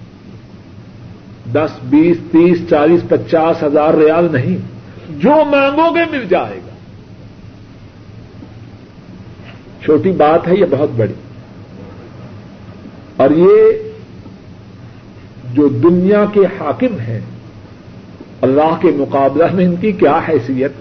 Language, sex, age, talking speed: Urdu, male, 50-69, 100 wpm